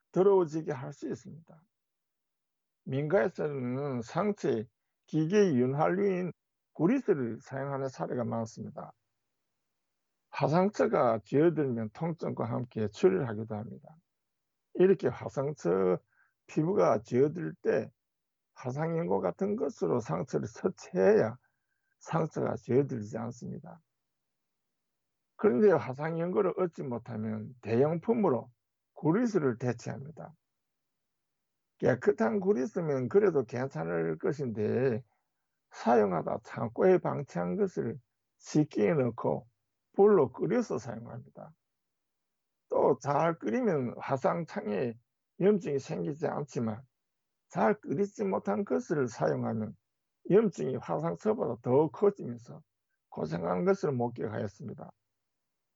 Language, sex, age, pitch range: Korean, male, 50-69, 120-190 Hz